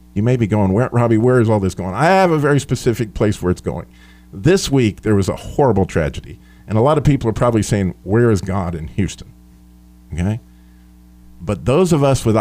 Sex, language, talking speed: male, English, 220 wpm